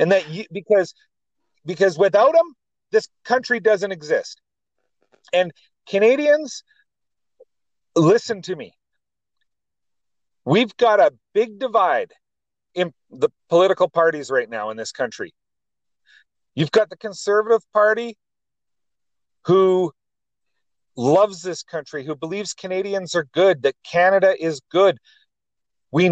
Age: 40-59